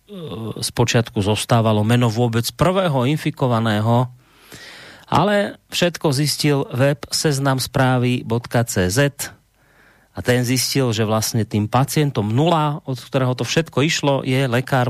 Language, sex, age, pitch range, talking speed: Slovak, male, 30-49, 110-140 Hz, 110 wpm